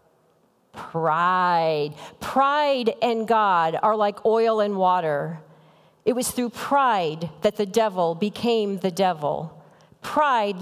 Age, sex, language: 40-59, female, English